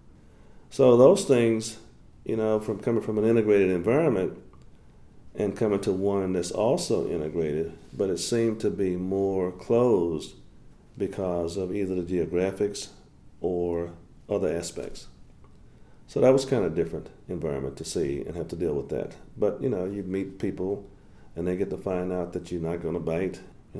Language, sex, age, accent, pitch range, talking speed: English, male, 50-69, American, 85-110 Hz, 170 wpm